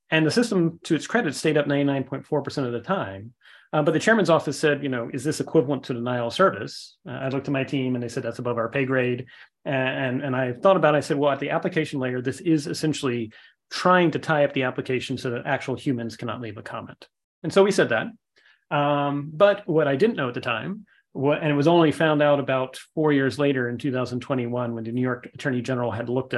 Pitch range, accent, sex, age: 125-150 Hz, American, male, 30-49